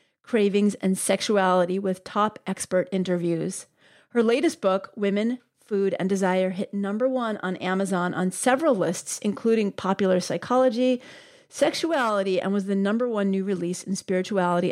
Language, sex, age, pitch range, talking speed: English, female, 40-59, 185-225 Hz, 145 wpm